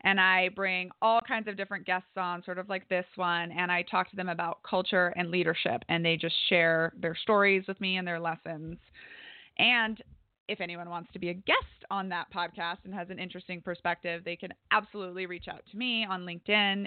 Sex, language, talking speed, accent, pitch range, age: female, English, 210 wpm, American, 170-195 Hz, 20-39